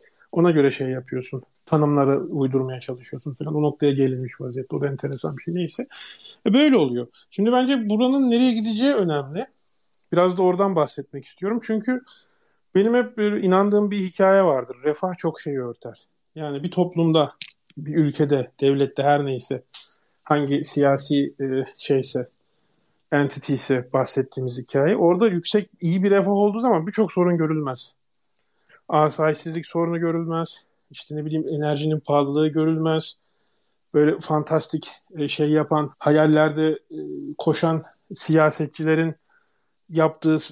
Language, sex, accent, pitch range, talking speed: Turkish, male, native, 145-185 Hz, 125 wpm